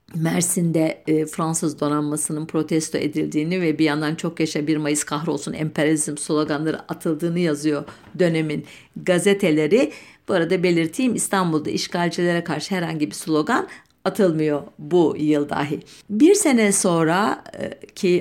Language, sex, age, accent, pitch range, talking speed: German, female, 60-79, Turkish, 160-210 Hz, 125 wpm